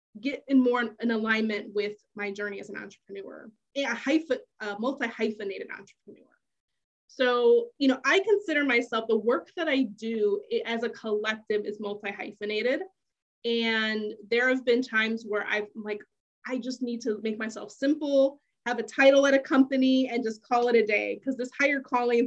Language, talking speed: English, 180 wpm